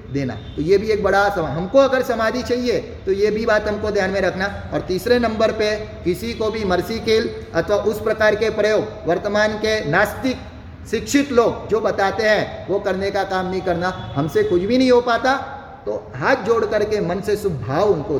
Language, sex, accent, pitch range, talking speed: Hindi, male, native, 150-220 Hz, 200 wpm